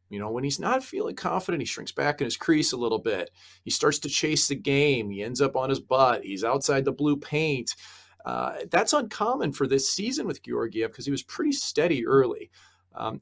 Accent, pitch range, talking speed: American, 100-155 Hz, 220 wpm